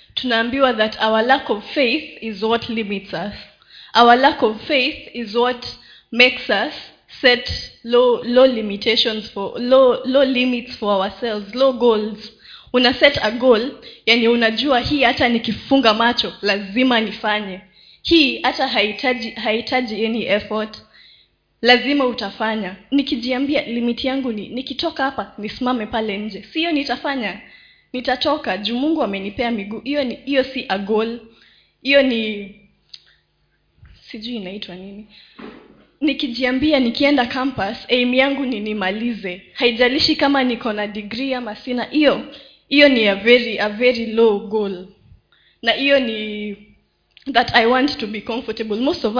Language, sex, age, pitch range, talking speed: Swahili, female, 20-39, 215-265 Hz, 135 wpm